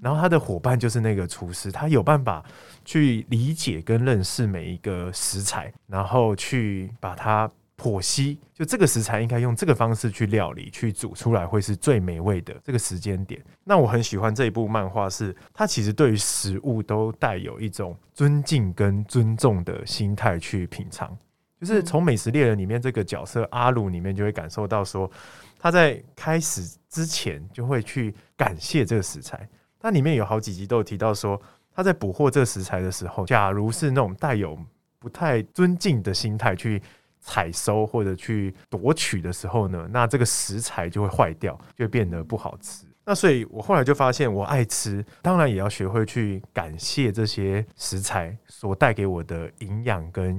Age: 20-39